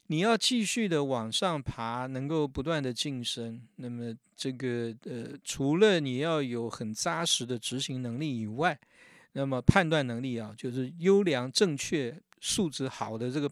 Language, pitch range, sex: Chinese, 125-175 Hz, male